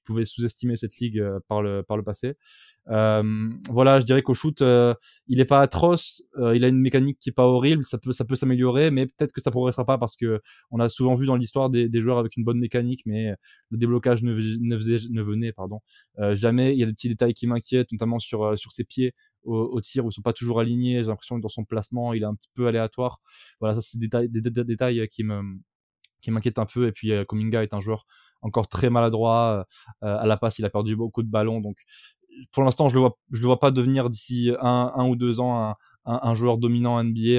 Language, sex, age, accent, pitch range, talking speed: French, male, 20-39, French, 110-125 Hz, 245 wpm